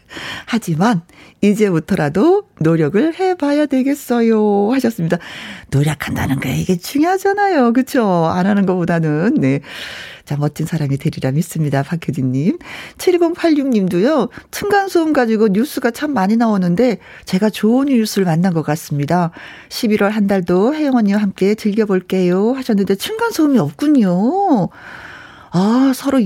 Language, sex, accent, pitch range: Korean, female, native, 170-245 Hz